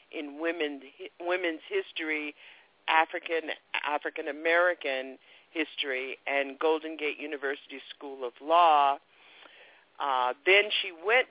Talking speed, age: 85 wpm, 50-69